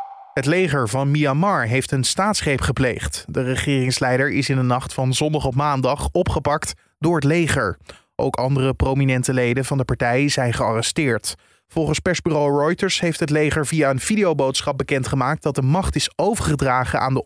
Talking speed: 165 wpm